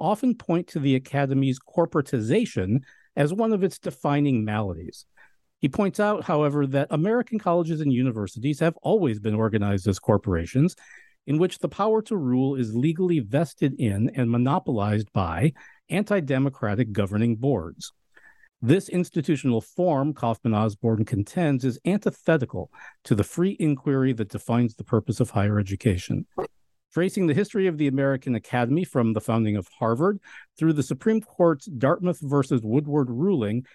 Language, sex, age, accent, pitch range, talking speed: English, male, 50-69, American, 115-160 Hz, 145 wpm